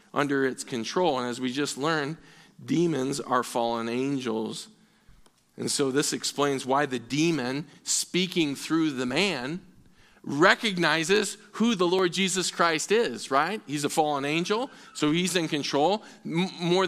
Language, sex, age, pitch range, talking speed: English, male, 40-59, 145-185 Hz, 140 wpm